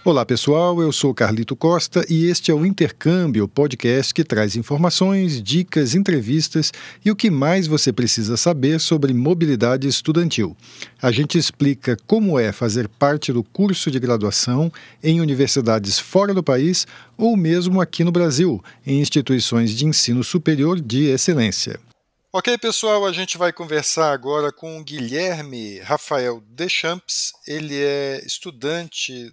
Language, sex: Portuguese, male